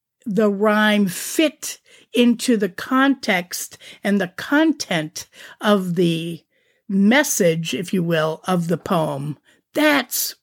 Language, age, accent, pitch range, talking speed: English, 50-69, American, 180-240 Hz, 110 wpm